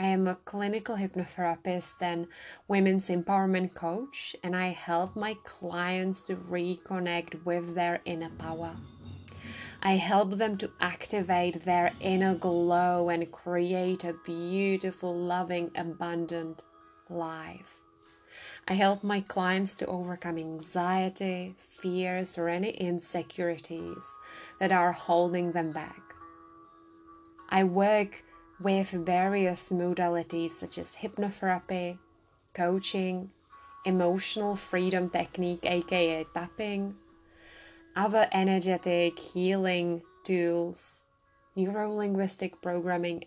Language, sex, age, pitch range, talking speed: English, female, 20-39, 170-190 Hz, 100 wpm